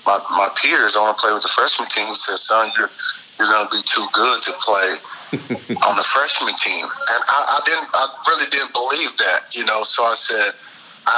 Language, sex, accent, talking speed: English, male, American, 215 wpm